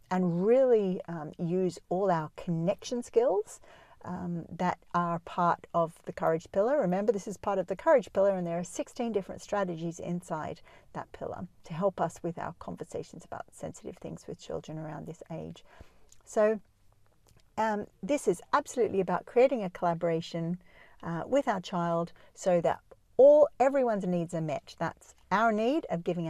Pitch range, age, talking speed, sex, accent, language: 170-225 Hz, 50-69, 165 wpm, female, Australian, English